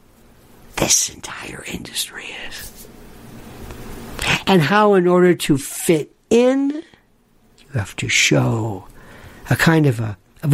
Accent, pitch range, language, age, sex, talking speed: American, 140-190 Hz, English, 60-79, male, 115 wpm